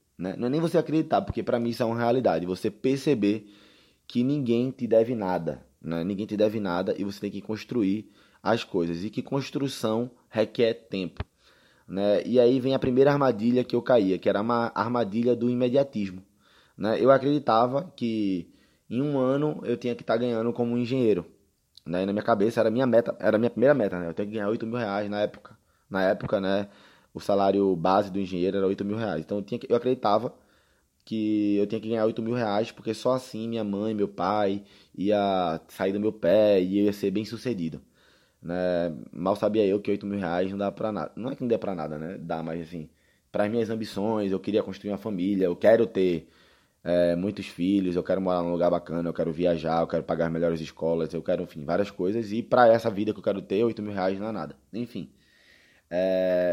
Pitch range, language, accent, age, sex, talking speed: 90-115 Hz, Portuguese, Brazilian, 20-39, male, 220 wpm